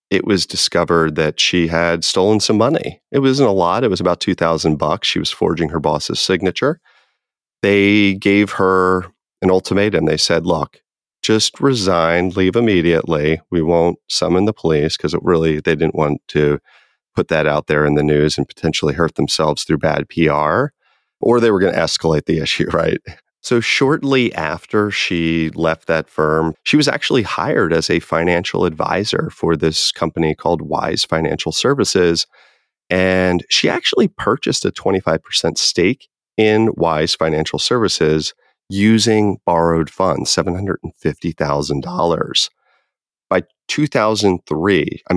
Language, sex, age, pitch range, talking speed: English, male, 30-49, 80-100 Hz, 145 wpm